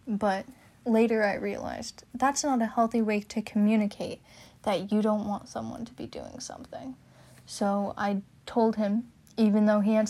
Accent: American